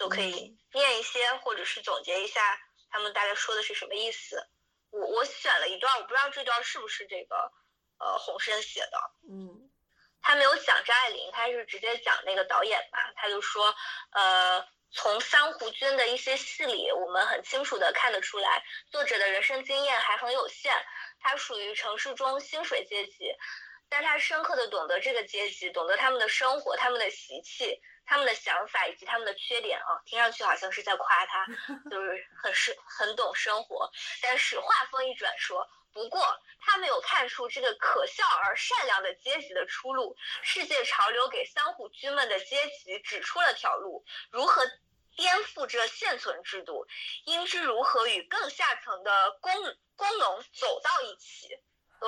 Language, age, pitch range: Chinese, 20-39, 220-365 Hz